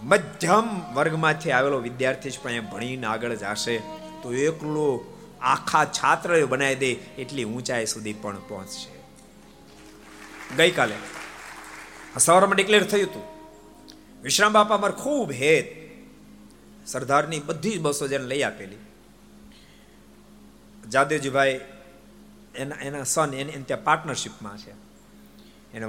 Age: 50-69